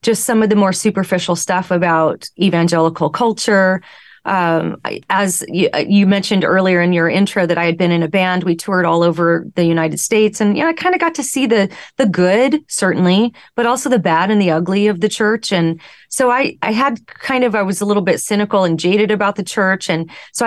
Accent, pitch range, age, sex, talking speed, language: American, 170-210 Hz, 30-49, female, 225 wpm, English